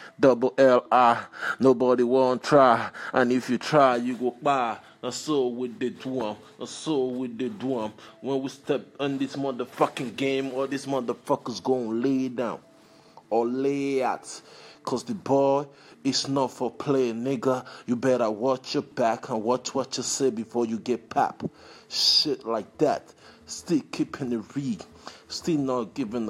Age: 20-39